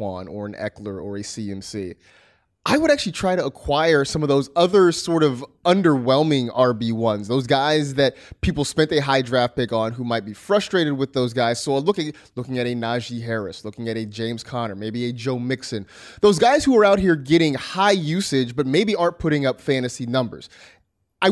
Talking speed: 200 wpm